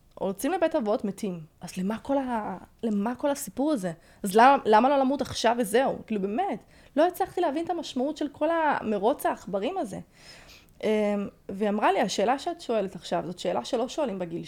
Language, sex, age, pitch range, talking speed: Hebrew, female, 20-39, 200-270 Hz, 180 wpm